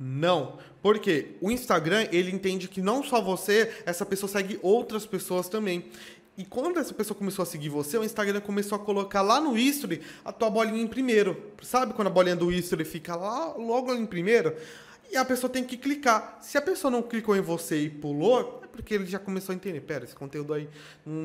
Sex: male